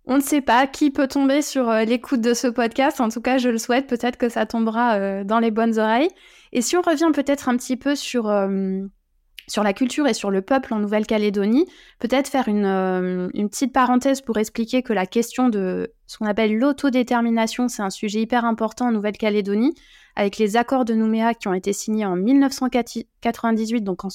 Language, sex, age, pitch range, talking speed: French, female, 20-39, 200-245 Hz, 200 wpm